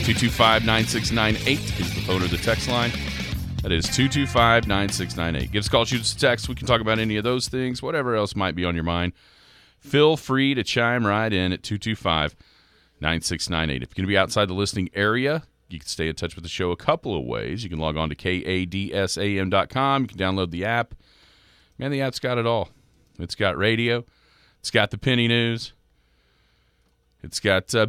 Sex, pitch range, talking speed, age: male, 75-110 Hz, 200 wpm, 40-59